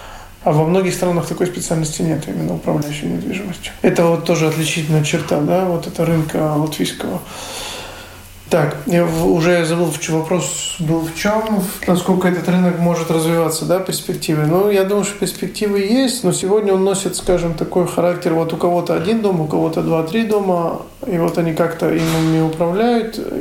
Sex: male